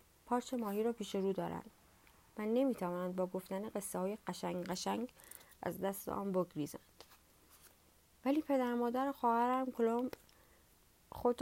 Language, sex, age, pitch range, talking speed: Persian, female, 30-49, 180-235 Hz, 115 wpm